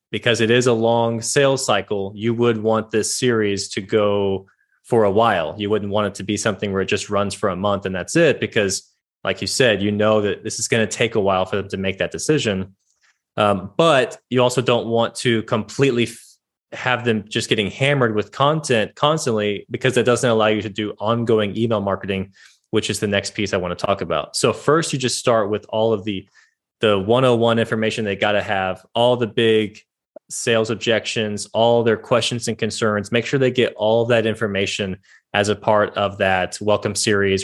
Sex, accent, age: male, American, 20-39